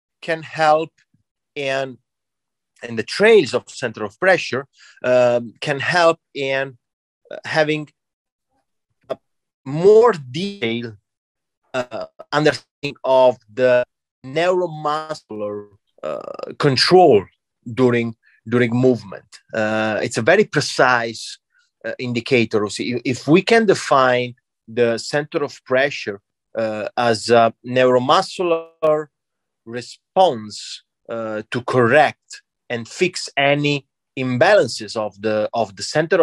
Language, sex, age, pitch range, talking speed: English, male, 30-49, 110-155 Hz, 105 wpm